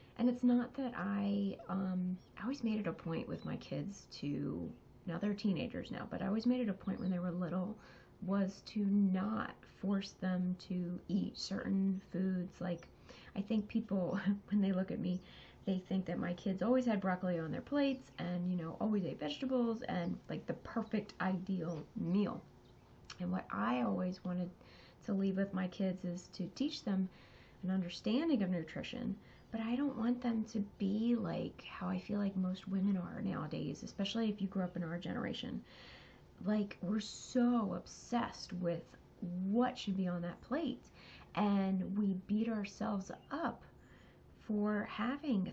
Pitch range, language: 180-215 Hz, English